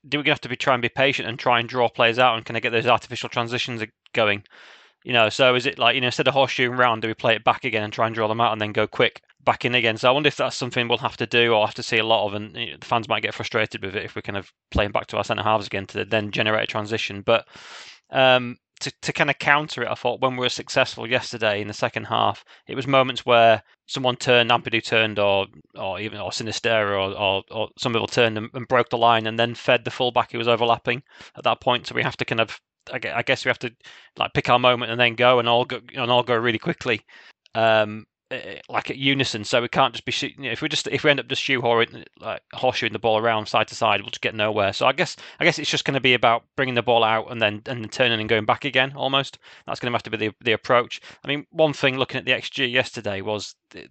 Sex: male